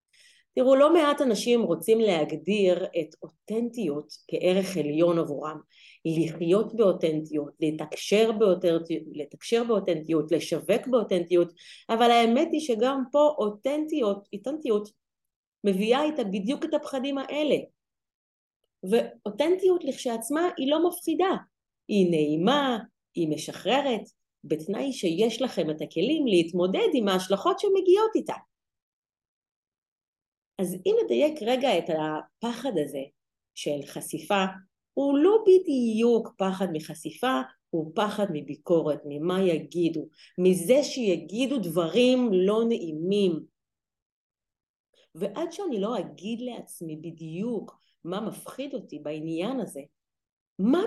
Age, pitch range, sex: 30-49, 170-270 Hz, female